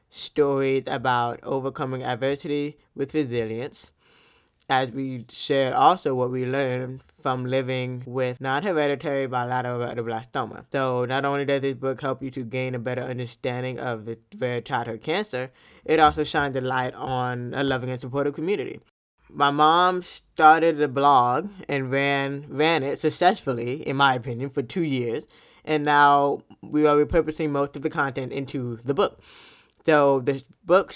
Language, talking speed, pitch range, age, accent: English, 155 wpm, 125-150 Hz, 20-39, American